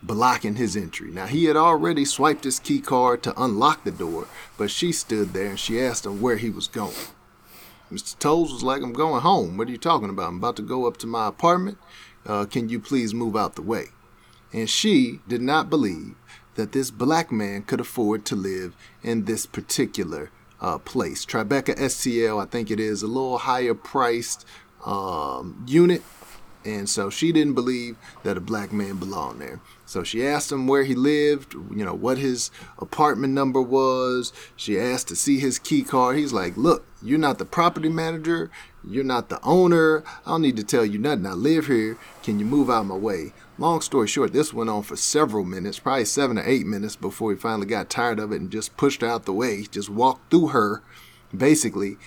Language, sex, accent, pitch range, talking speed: English, male, American, 110-145 Hz, 205 wpm